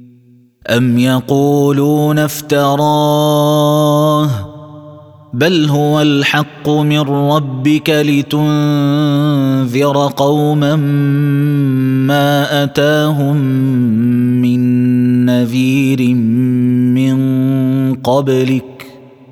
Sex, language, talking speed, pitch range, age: male, Arabic, 50 wpm, 125-145 Hz, 30-49